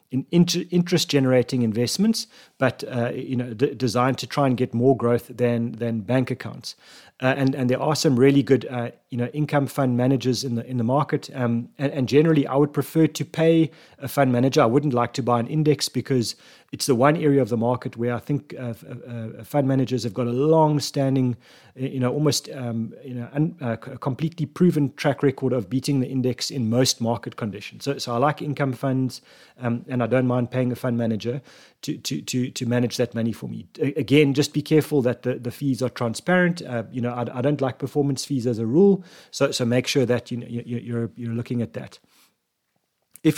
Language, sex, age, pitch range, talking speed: English, male, 30-49, 120-145 Hz, 215 wpm